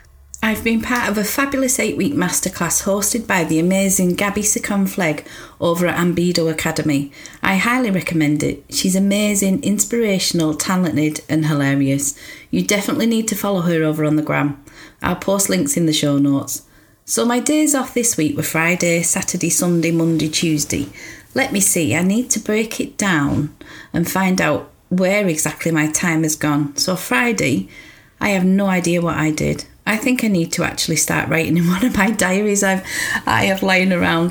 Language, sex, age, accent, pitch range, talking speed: English, female, 40-59, British, 155-195 Hz, 180 wpm